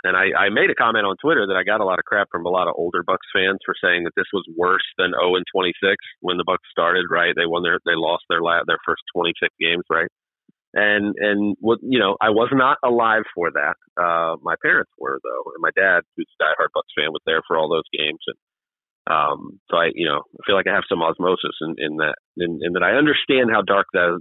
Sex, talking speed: male, 260 wpm